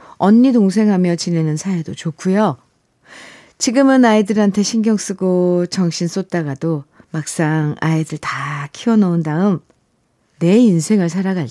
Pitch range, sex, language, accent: 170-220 Hz, female, Korean, native